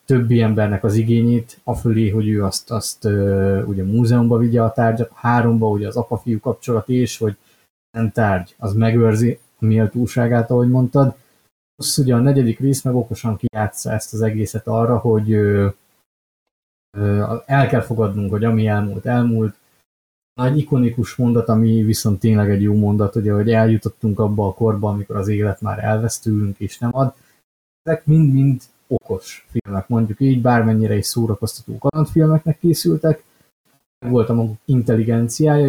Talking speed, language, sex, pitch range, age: 150 wpm, Hungarian, male, 110-125 Hz, 30-49